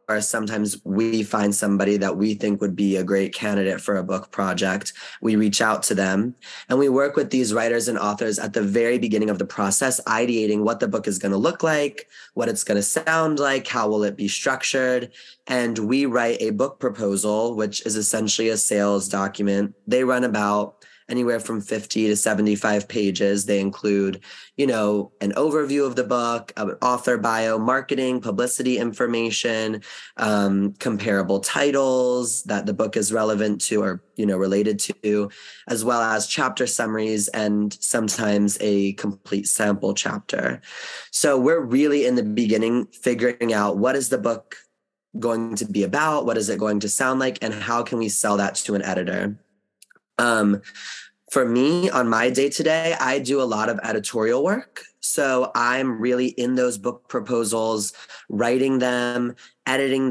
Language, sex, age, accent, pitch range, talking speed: English, male, 20-39, American, 105-125 Hz, 175 wpm